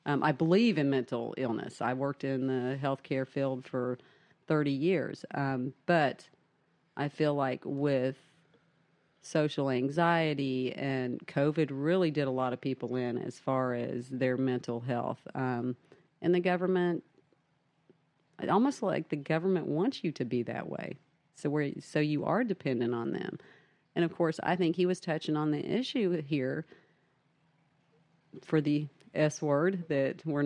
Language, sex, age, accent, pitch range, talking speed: English, female, 40-59, American, 135-165 Hz, 155 wpm